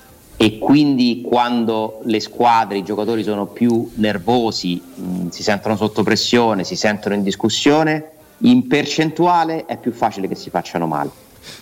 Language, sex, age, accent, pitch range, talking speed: Italian, male, 30-49, native, 95-150 Hz, 140 wpm